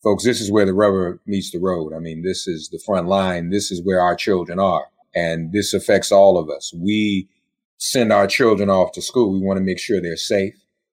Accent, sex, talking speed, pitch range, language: American, male, 230 wpm, 95-115 Hz, English